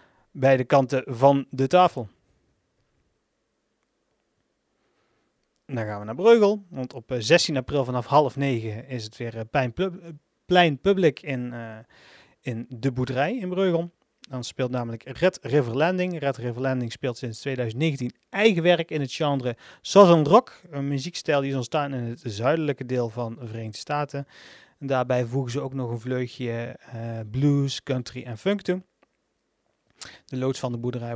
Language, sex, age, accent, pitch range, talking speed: Dutch, male, 40-59, Dutch, 120-145 Hz, 150 wpm